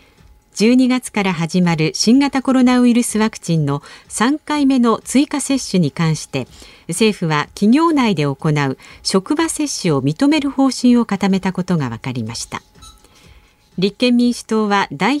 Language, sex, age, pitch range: Japanese, female, 50-69, 165-255 Hz